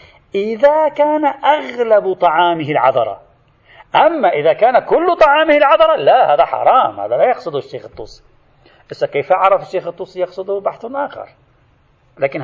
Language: Arabic